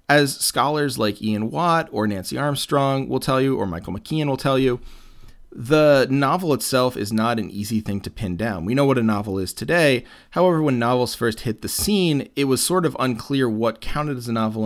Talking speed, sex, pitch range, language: 215 wpm, male, 100-135 Hz, English